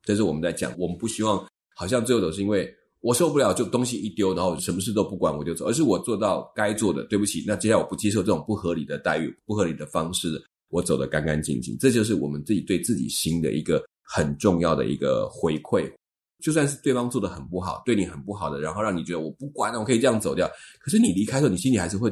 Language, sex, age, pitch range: Chinese, male, 30-49, 85-115 Hz